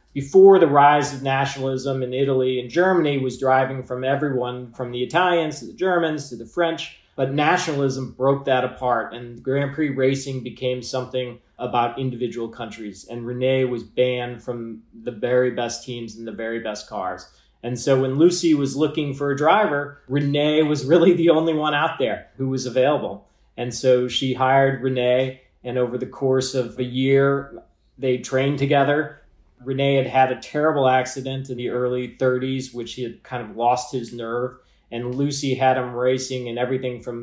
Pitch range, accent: 125-140 Hz, American